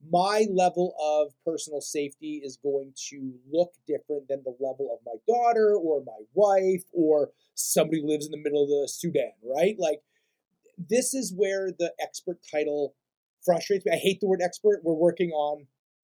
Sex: male